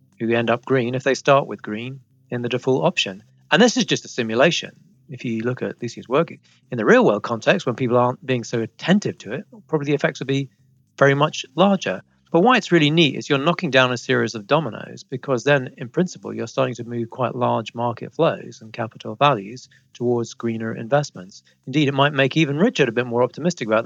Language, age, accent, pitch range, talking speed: English, 40-59, British, 120-145 Hz, 225 wpm